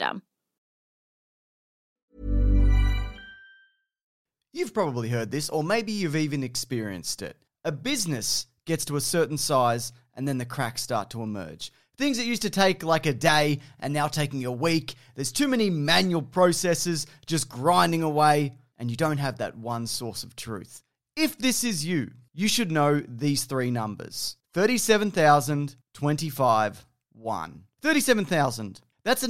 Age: 30-49